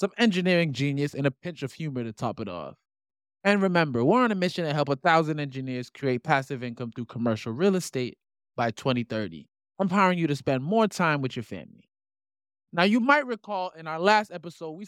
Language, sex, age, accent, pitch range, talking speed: English, male, 20-39, American, 135-210 Hz, 200 wpm